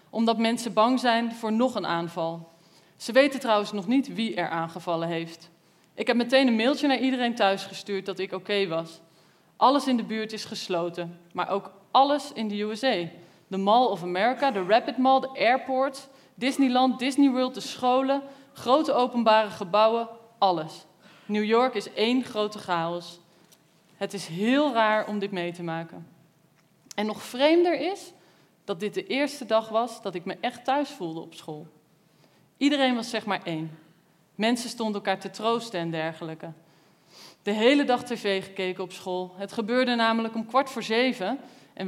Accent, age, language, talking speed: Dutch, 20-39, Dutch, 170 wpm